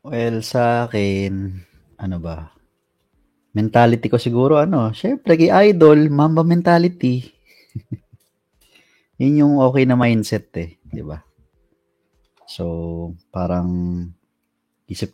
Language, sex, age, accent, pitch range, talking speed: Filipino, male, 20-39, native, 90-110 Hz, 100 wpm